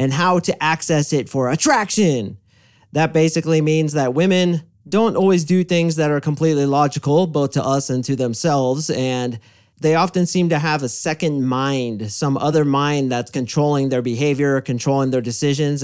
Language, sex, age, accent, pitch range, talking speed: English, male, 30-49, American, 130-165 Hz, 170 wpm